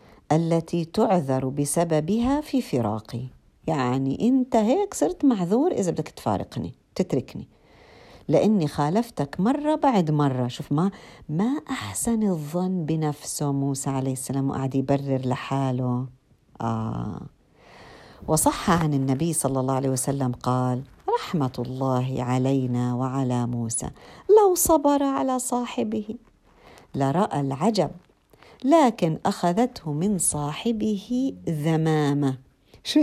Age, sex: 50-69, female